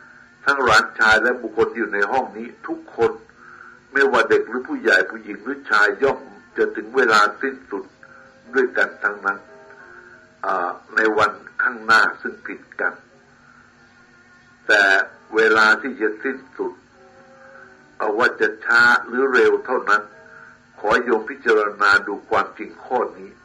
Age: 60-79